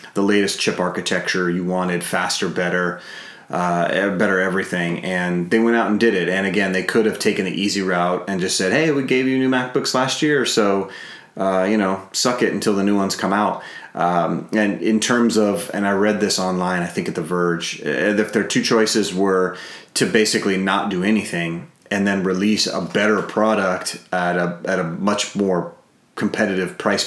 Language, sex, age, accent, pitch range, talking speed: English, male, 30-49, American, 85-100 Hz, 195 wpm